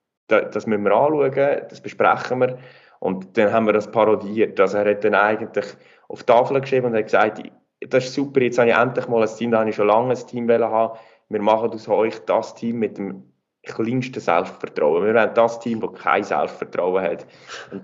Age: 20-39